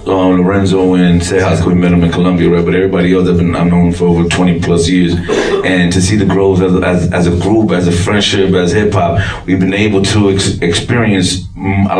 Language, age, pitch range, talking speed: English, 30-49, 90-105 Hz, 230 wpm